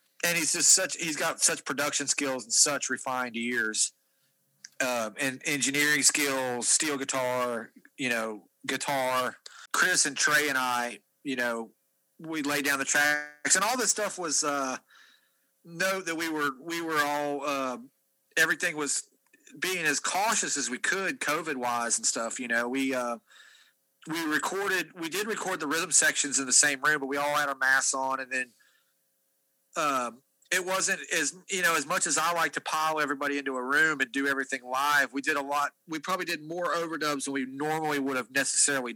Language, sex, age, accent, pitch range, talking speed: English, male, 30-49, American, 130-150 Hz, 185 wpm